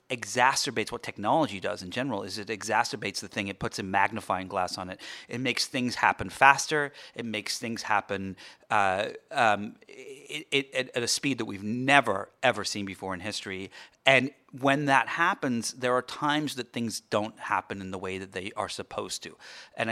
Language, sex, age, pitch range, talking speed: English, male, 40-59, 105-140 Hz, 185 wpm